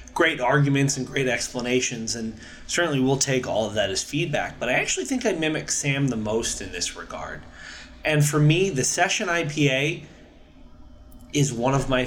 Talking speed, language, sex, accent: 180 wpm, English, male, American